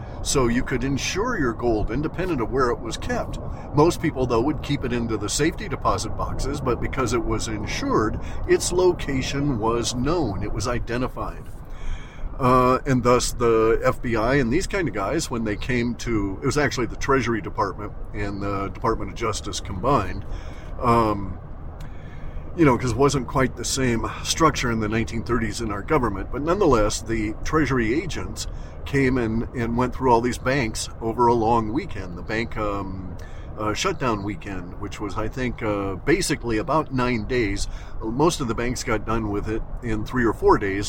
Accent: American